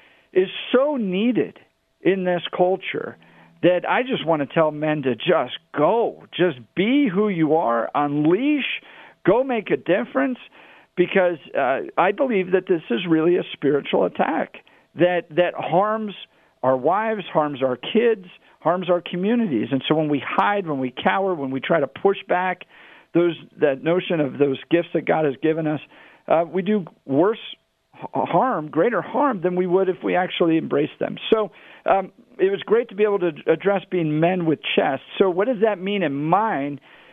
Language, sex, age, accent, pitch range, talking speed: English, male, 50-69, American, 155-205 Hz, 175 wpm